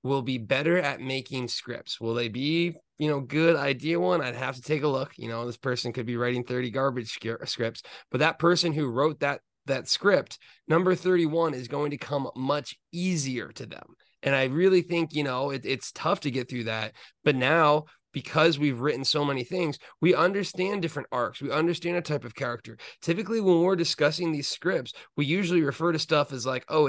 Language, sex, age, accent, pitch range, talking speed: English, male, 30-49, American, 130-160 Hz, 210 wpm